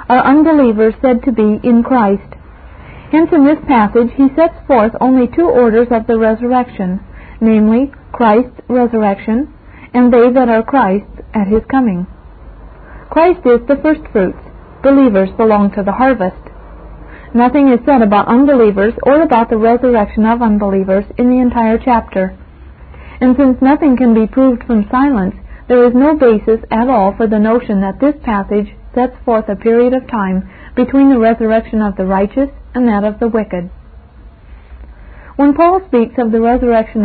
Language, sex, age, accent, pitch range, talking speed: English, female, 50-69, American, 205-255 Hz, 160 wpm